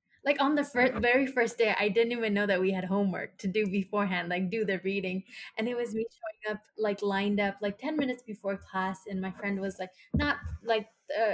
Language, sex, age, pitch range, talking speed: English, female, 10-29, 190-230 Hz, 235 wpm